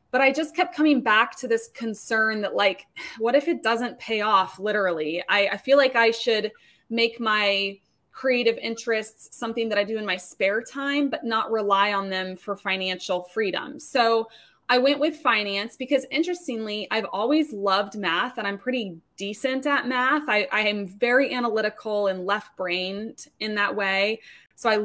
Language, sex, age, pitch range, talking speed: English, female, 20-39, 200-235 Hz, 175 wpm